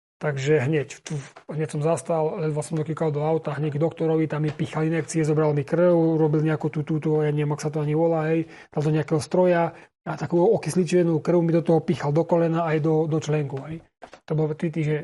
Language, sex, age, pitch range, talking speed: Czech, male, 30-49, 155-170 Hz, 230 wpm